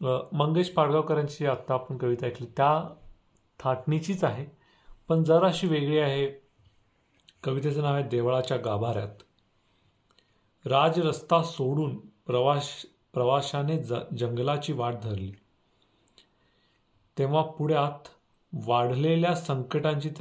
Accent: native